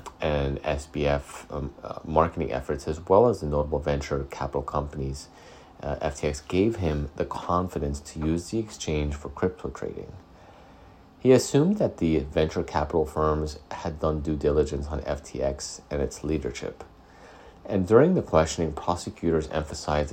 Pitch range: 70-80 Hz